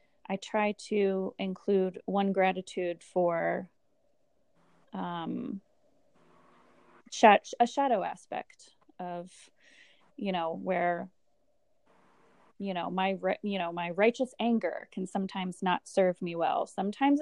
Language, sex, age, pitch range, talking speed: English, female, 20-39, 190-225 Hz, 110 wpm